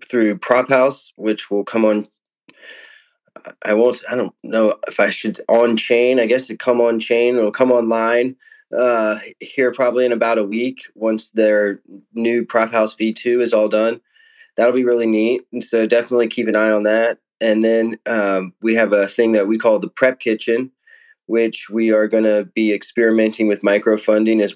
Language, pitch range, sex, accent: English, 105-120 Hz, male, American